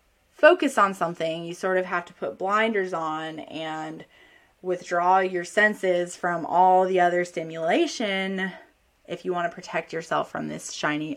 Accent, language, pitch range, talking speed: American, English, 175-230 Hz, 155 wpm